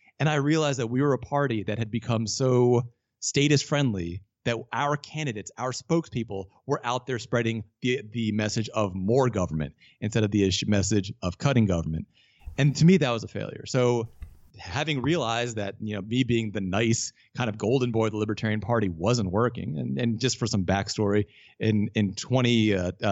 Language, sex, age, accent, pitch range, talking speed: English, male, 30-49, American, 100-130 Hz, 190 wpm